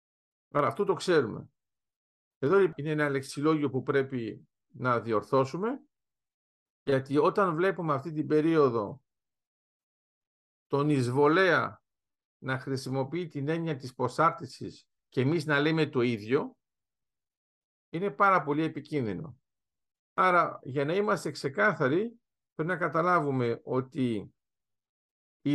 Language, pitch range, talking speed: Greek, 135-180 Hz, 110 wpm